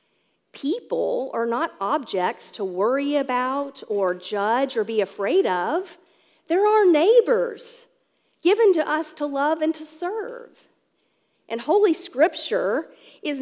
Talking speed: 125 wpm